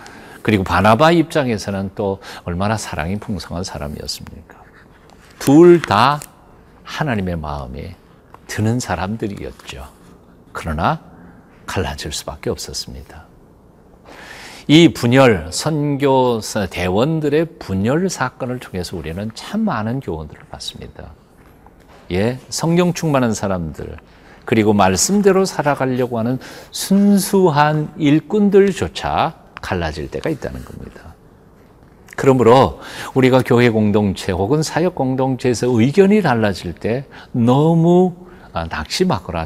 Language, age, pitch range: Korean, 50-69, 90-150 Hz